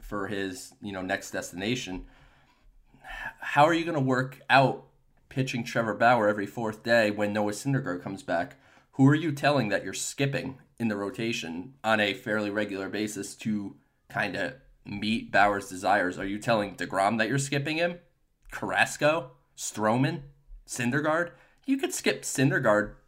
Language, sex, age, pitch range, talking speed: English, male, 20-39, 105-135 Hz, 155 wpm